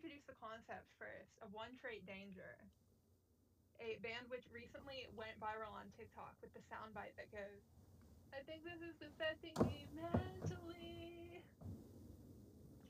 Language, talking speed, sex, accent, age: English, 140 wpm, female, American, 20-39